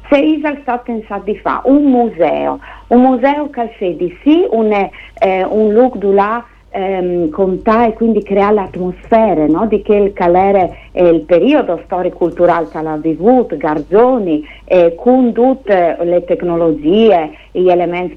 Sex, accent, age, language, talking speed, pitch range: female, native, 50-69, Italian, 150 wpm, 180-240 Hz